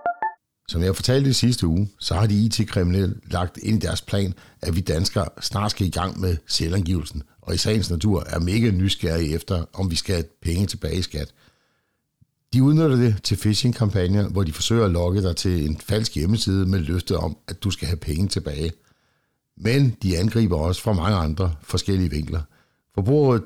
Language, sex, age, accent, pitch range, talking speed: Danish, male, 60-79, native, 90-110 Hz, 190 wpm